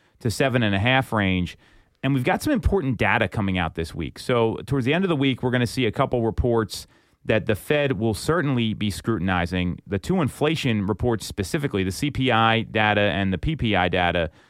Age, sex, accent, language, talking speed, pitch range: 30-49, male, American, English, 190 wpm, 105-130 Hz